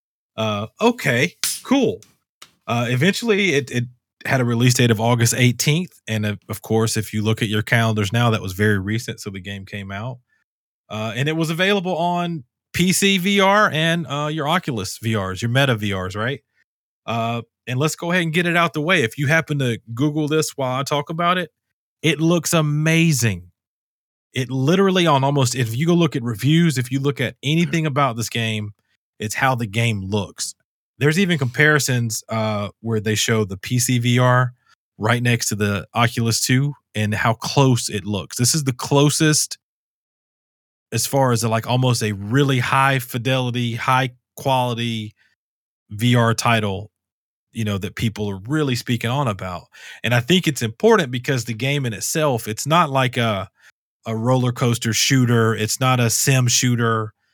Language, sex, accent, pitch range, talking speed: English, male, American, 110-145 Hz, 180 wpm